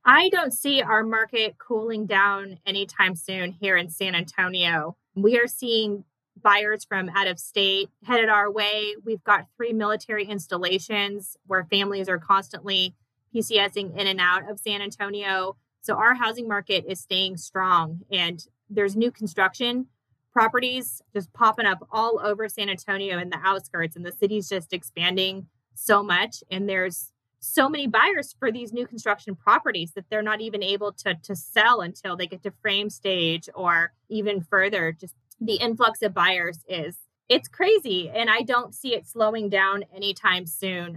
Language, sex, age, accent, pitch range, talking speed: English, female, 20-39, American, 185-215 Hz, 165 wpm